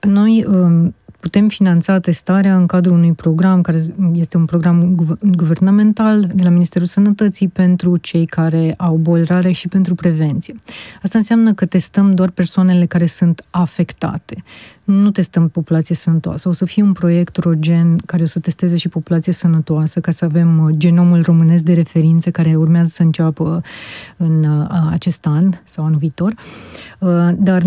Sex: female